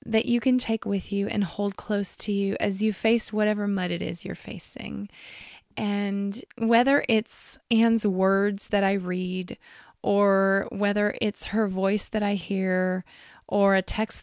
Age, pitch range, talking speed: 20-39, 195-235 Hz, 165 wpm